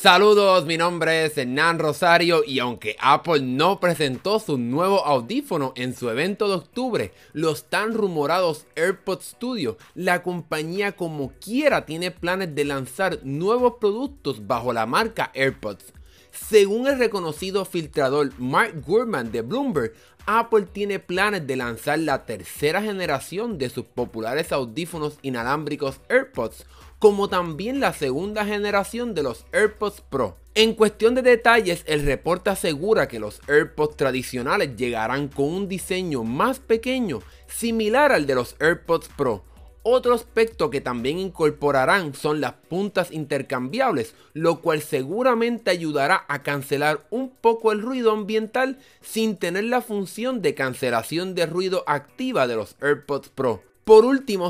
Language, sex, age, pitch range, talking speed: Spanish, male, 30-49, 145-210 Hz, 140 wpm